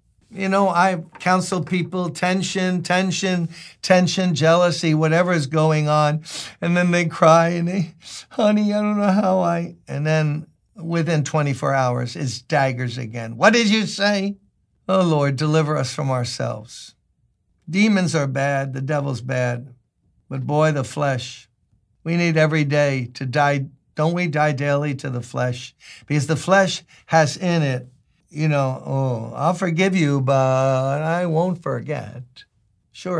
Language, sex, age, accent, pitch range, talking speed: English, male, 60-79, American, 125-170 Hz, 150 wpm